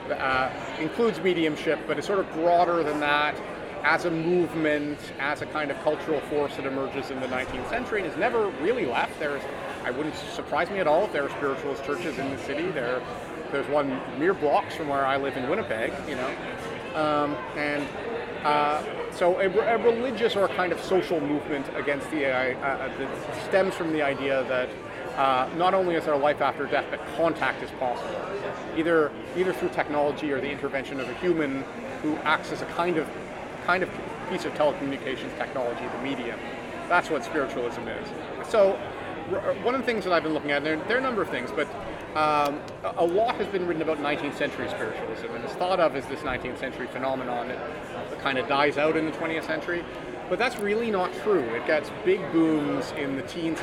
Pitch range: 140-170 Hz